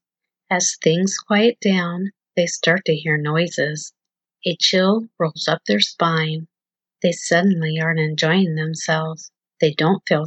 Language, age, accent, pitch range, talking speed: English, 40-59, American, 160-195 Hz, 135 wpm